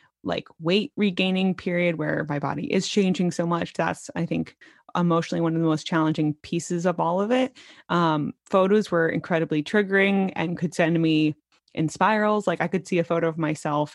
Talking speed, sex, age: 190 wpm, female, 20-39